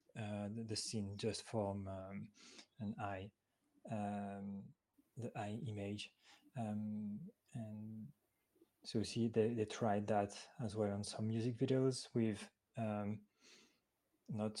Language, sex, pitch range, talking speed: English, male, 105-115 Hz, 125 wpm